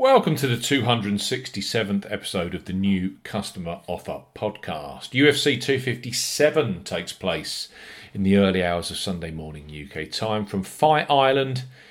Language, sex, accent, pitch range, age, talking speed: English, male, British, 100-135 Hz, 40-59, 135 wpm